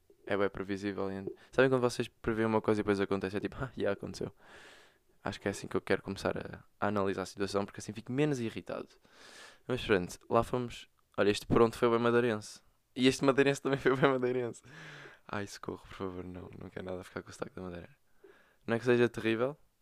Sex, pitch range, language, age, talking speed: male, 105-130 Hz, Portuguese, 20-39, 230 wpm